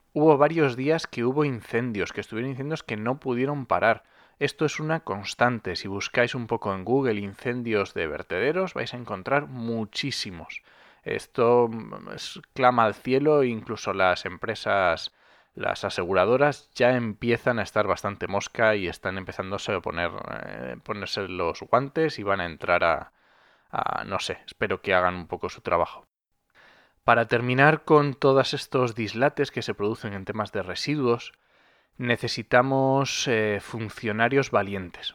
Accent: Spanish